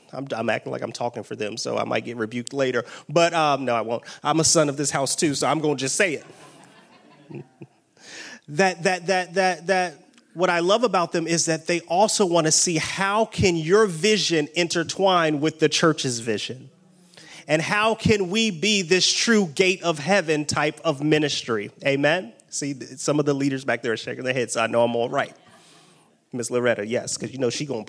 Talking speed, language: 215 wpm, English